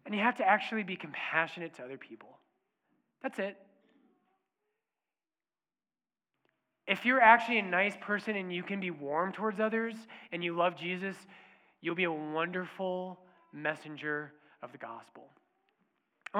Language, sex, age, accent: English, male, 20-39, American